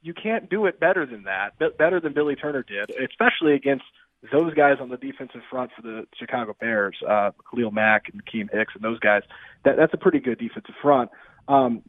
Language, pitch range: English, 115-145 Hz